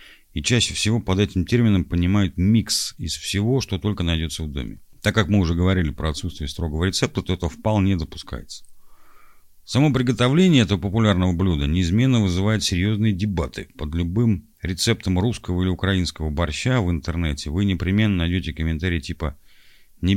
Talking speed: 155 wpm